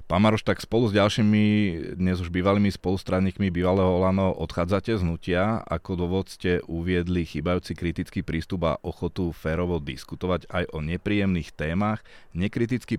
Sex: male